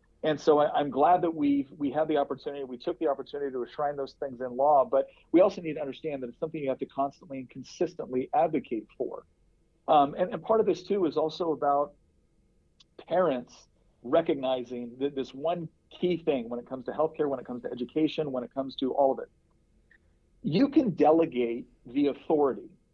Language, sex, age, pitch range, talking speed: English, male, 40-59, 130-165 Hz, 200 wpm